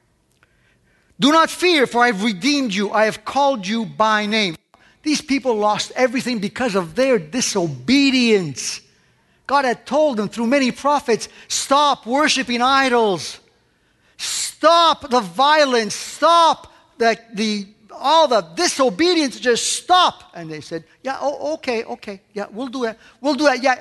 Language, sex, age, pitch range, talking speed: English, male, 50-69, 190-275 Hz, 145 wpm